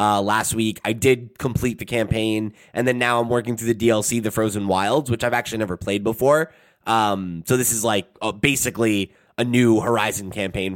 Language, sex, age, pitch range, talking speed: English, male, 20-39, 100-125 Hz, 200 wpm